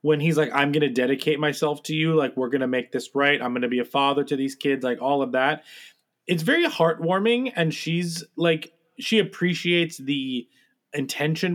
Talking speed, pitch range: 210 wpm, 140-175 Hz